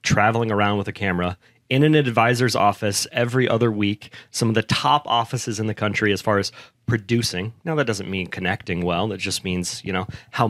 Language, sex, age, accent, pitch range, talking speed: English, male, 30-49, American, 100-125 Hz, 205 wpm